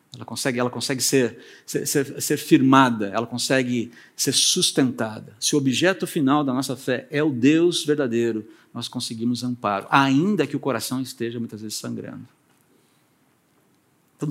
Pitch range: 115-145 Hz